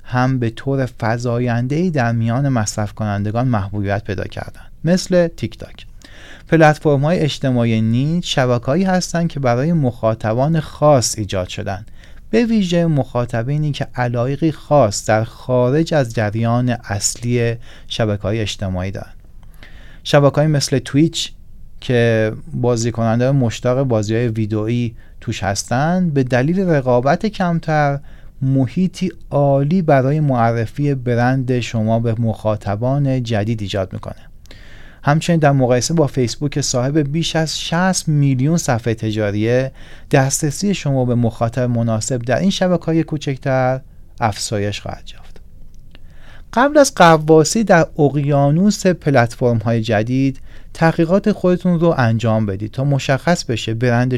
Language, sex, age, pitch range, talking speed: English, male, 30-49, 110-150 Hz, 115 wpm